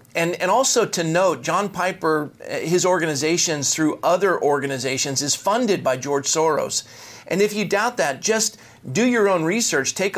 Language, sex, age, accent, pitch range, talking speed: English, male, 50-69, American, 140-170 Hz, 165 wpm